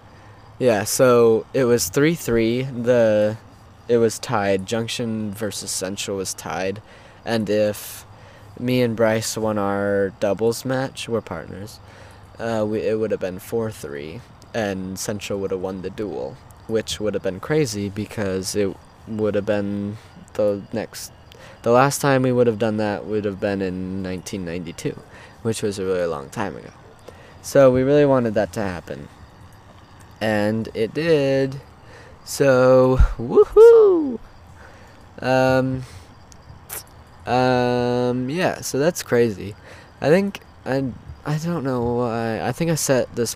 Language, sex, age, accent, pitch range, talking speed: English, male, 20-39, American, 100-120 Hz, 140 wpm